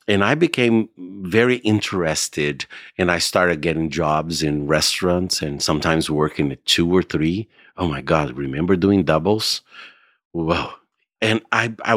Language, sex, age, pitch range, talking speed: English, male, 50-69, 75-100 Hz, 145 wpm